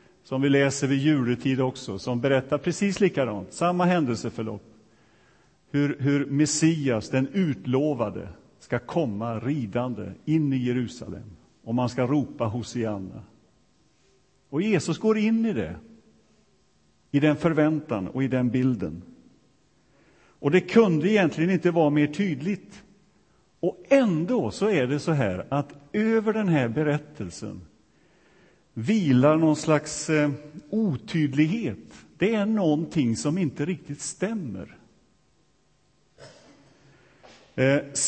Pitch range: 130-170 Hz